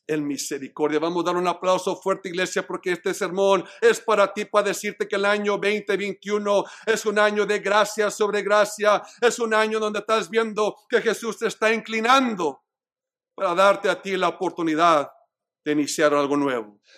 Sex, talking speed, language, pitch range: male, 175 wpm, Spanish, 195-240 Hz